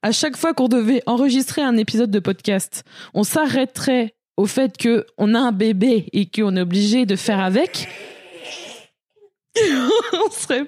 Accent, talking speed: French, 150 wpm